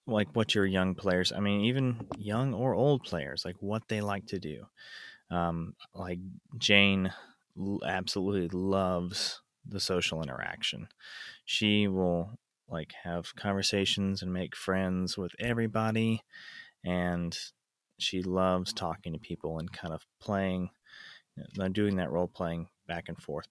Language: English